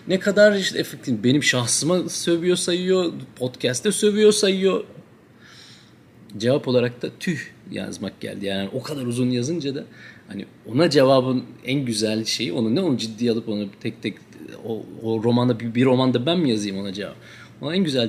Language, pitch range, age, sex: Turkish, 115-150 Hz, 40-59, male